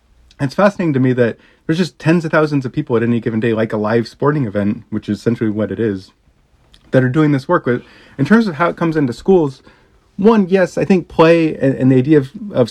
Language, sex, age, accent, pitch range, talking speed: English, male, 30-49, American, 105-140 Hz, 240 wpm